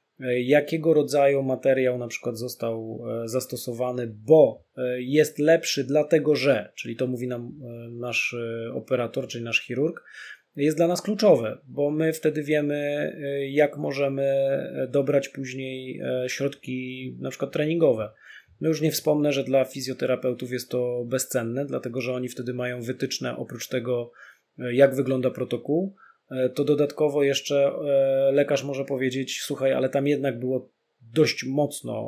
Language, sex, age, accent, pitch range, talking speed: Polish, male, 20-39, native, 125-145 Hz, 130 wpm